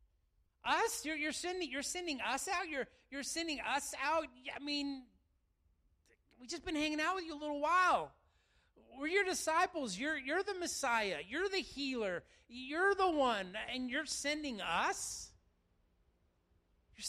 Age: 30-49